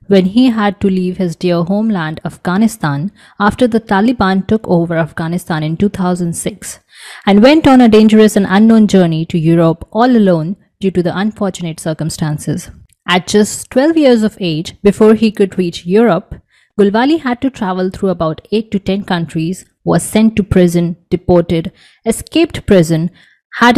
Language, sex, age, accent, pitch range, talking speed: English, female, 20-39, Indian, 170-215 Hz, 160 wpm